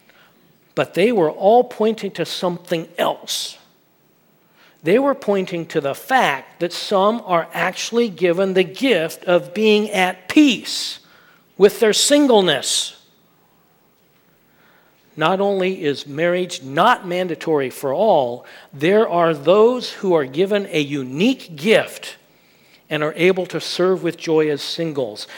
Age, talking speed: 50-69, 130 wpm